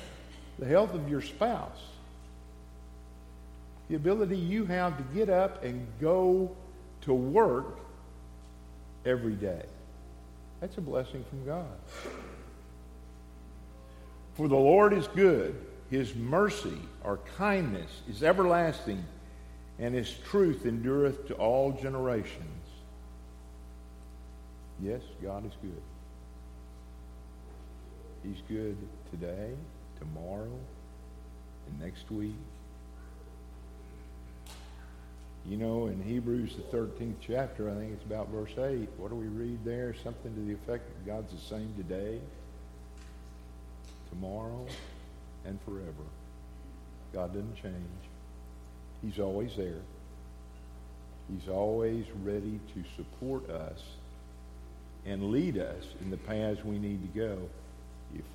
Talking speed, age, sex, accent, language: 110 wpm, 50-69, male, American, English